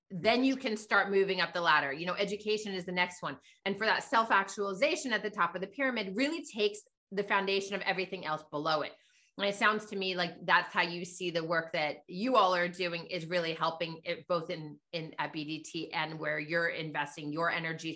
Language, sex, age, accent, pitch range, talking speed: English, female, 30-49, American, 170-215 Hz, 220 wpm